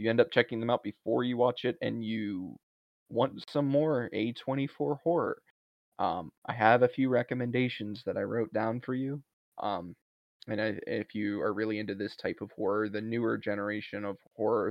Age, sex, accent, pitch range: 20-39, male, American, 110-125 Hz